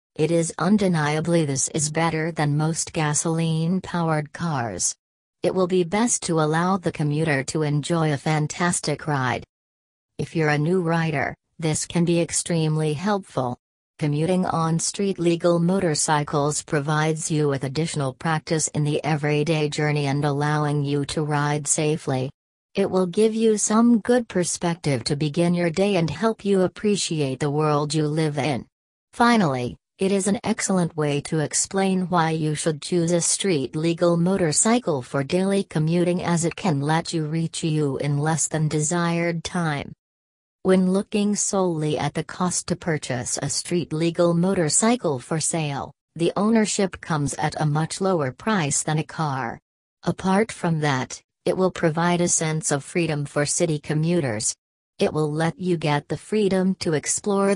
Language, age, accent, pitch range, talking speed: English, 40-59, American, 150-180 Hz, 155 wpm